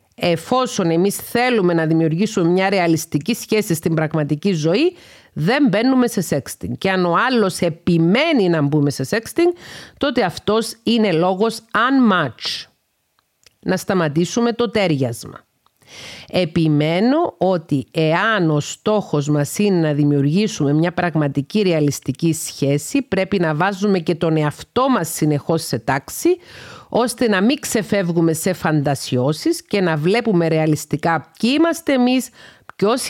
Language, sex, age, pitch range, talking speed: Greek, female, 40-59, 155-225 Hz, 125 wpm